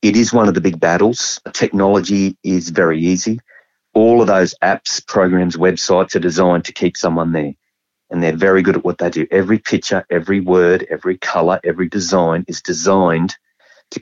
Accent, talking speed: Australian, 180 wpm